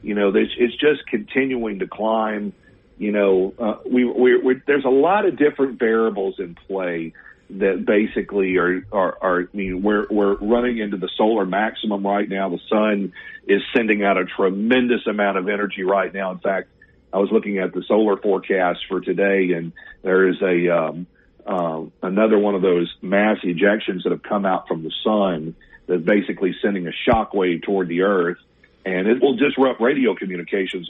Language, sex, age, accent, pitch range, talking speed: English, male, 50-69, American, 95-110 Hz, 180 wpm